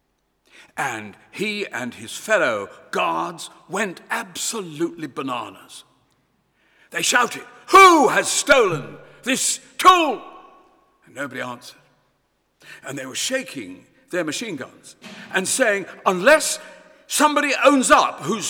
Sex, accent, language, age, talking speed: male, British, English, 60-79, 105 wpm